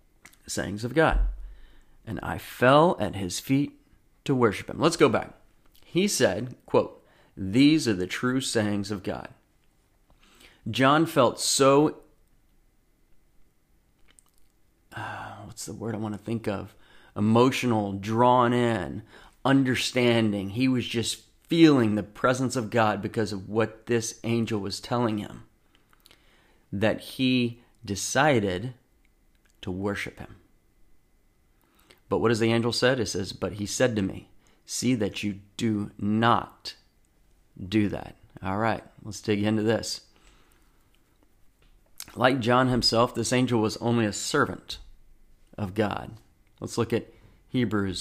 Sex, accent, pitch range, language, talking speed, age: male, American, 105-120 Hz, English, 130 wpm, 40-59